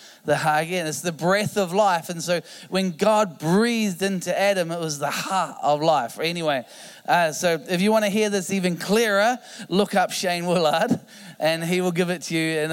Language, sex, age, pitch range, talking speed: English, male, 20-39, 160-200 Hz, 205 wpm